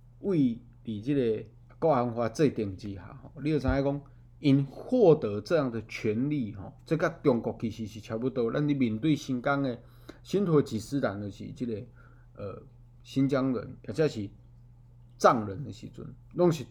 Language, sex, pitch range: Chinese, male, 115-140 Hz